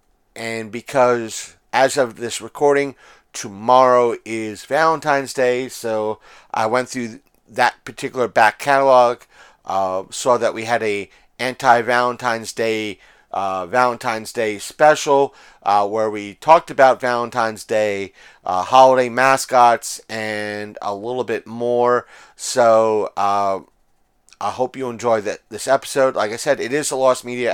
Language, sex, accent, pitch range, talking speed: English, male, American, 110-130 Hz, 135 wpm